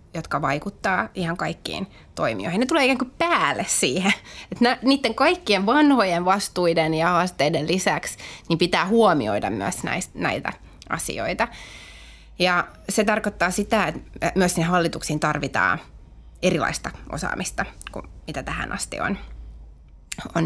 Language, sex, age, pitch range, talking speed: Finnish, female, 20-39, 155-210 Hz, 115 wpm